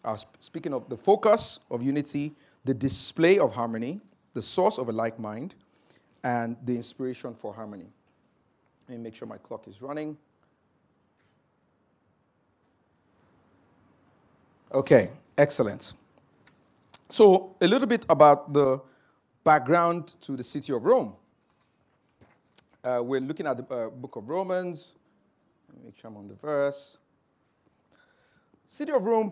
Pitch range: 125-165 Hz